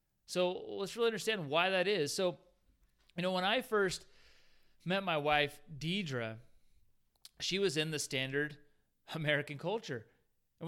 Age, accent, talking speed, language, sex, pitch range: 30-49, American, 140 wpm, English, male, 135-175 Hz